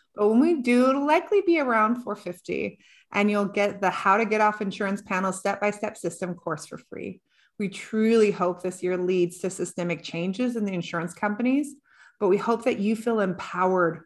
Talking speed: 190 wpm